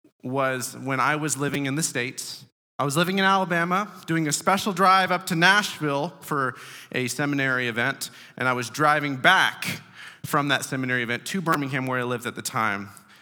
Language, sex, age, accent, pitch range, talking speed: English, male, 30-49, American, 130-180 Hz, 185 wpm